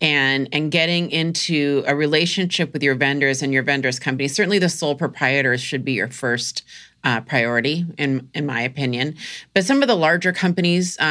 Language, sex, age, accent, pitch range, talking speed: English, female, 30-49, American, 135-165 Hz, 180 wpm